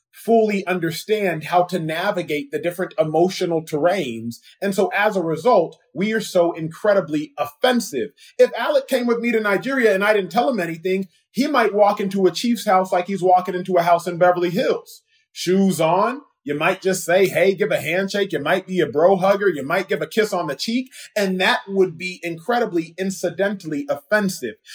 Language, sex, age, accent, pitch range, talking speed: English, male, 30-49, American, 150-205 Hz, 190 wpm